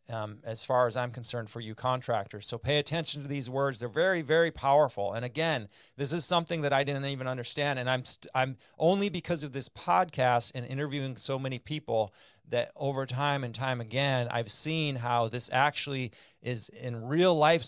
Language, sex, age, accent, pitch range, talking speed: English, male, 30-49, American, 115-145 Hz, 195 wpm